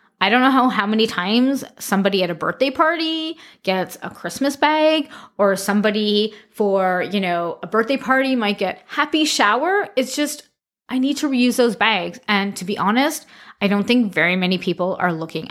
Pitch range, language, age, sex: 205-270 Hz, English, 20-39, female